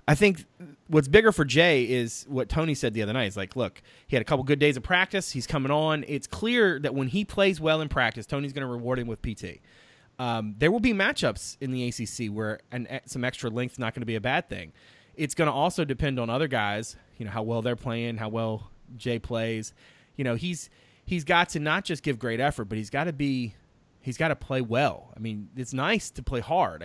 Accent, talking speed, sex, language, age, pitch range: American, 245 wpm, male, English, 30-49, 115-155 Hz